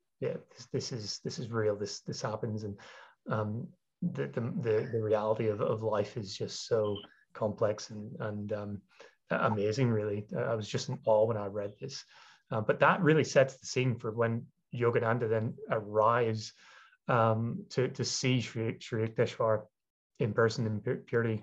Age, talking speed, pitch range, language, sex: 30-49, 165 wpm, 110-125 Hz, English, male